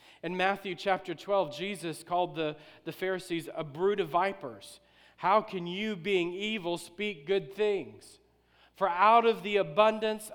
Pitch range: 175-215 Hz